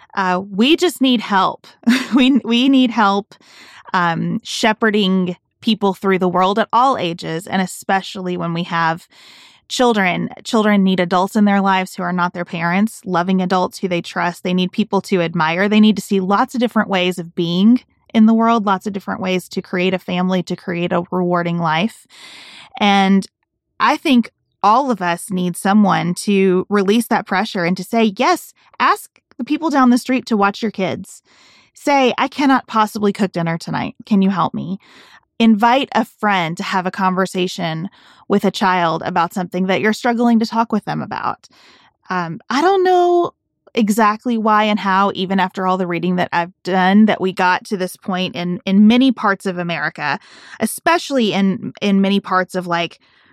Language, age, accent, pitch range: English, 20-39, American, 180-220 Hz